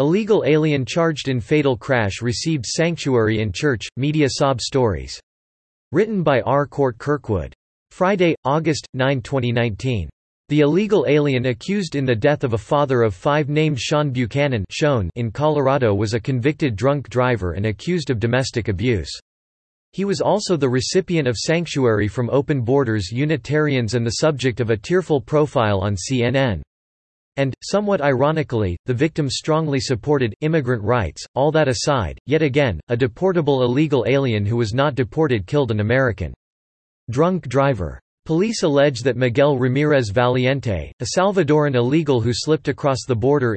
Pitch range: 115-150 Hz